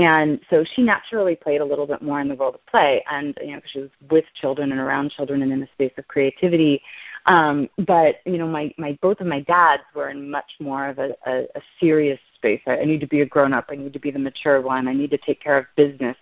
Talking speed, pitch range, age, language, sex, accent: 265 wpm, 145-185 Hz, 30-49, English, female, American